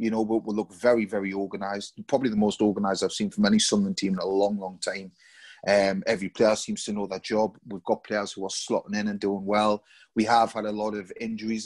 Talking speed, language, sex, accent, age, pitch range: 245 wpm, English, male, British, 30-49, 100-115 Hz